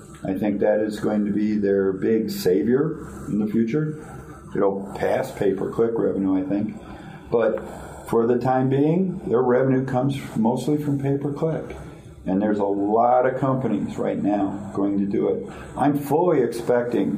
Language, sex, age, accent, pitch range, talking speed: English, male, 50-69, American, 105-135 Hz, 155 wpm